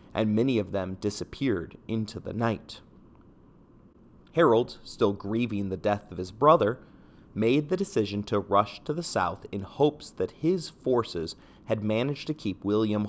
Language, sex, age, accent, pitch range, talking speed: English, male, 30-49, American, 100-125 Hz, 155 wpm